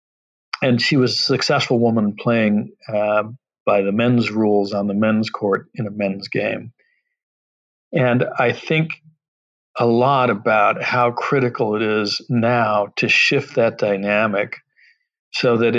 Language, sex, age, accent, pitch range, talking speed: English, male, 50-69, American, 105-130 Hz, 140 wpm